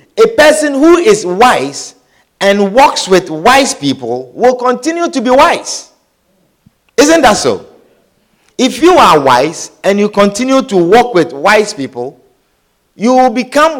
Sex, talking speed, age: male, 145 wpm, 50-69